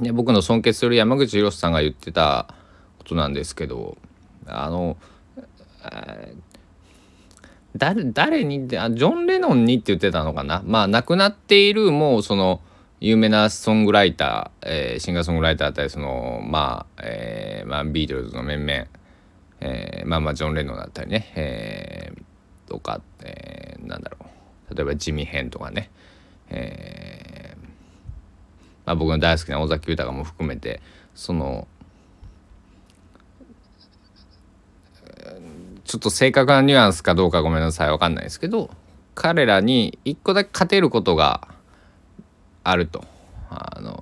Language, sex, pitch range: Japanese, male, 80-105 Hz